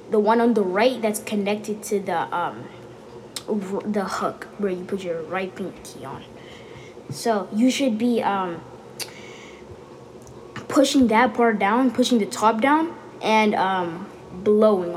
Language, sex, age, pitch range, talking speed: English, female, 20-39, 200-250 Hz, 145 wpm